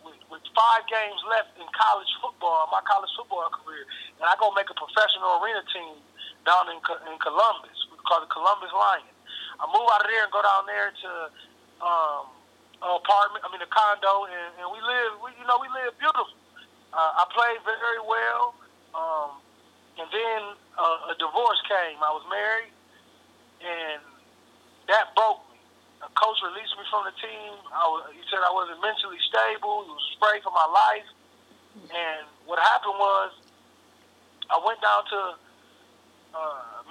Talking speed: 170 wpm